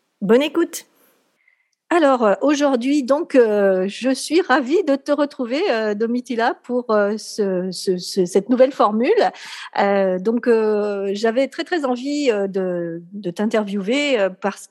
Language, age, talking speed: French, 50-69, 120 wpm